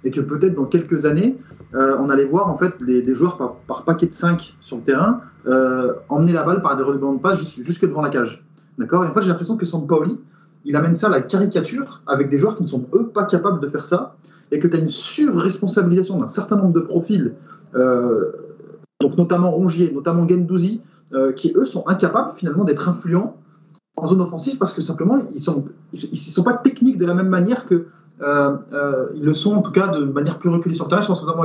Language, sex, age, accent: French, male, 30-49, French